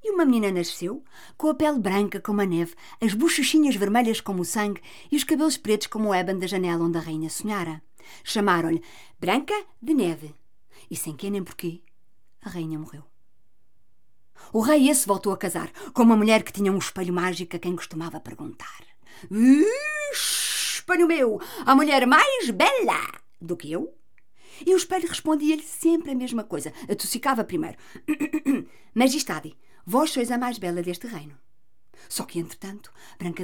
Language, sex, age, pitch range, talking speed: Portuguese, female, 50-69, 180-290 Hz, 165 wpm